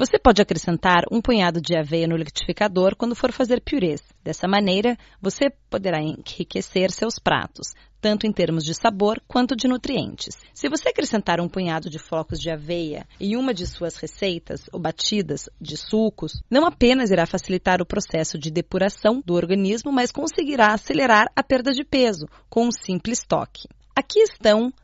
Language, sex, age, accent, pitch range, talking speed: Portuguese, female, 30-49, Brazilian, 170-230 Hz, 165 wpm